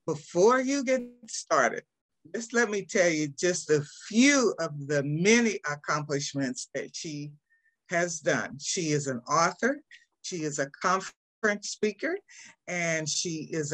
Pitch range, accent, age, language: 155-230 Hz, American, 50-69, English